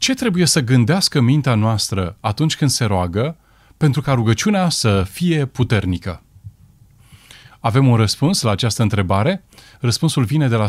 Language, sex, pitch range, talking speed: Romanian, male, 105-140 Hz, 145 wpm